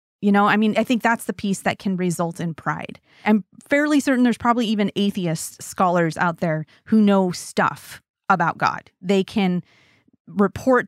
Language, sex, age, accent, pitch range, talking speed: English, female, 30-49, American, 180-225 Hz, 175 wpm